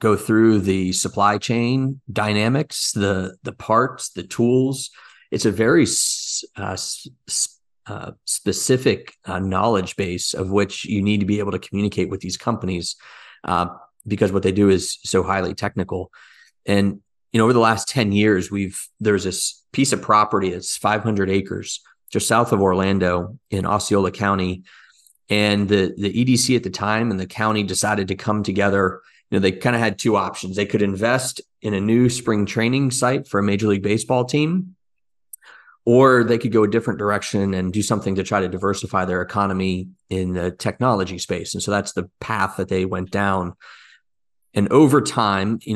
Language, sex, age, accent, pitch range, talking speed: English, male, 30-49, American, 95-110 Hz, 180 wpm